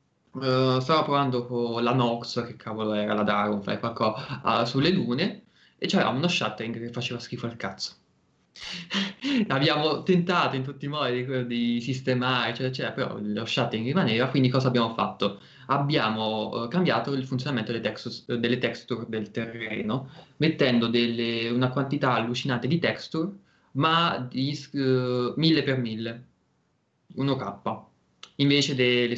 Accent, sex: native, male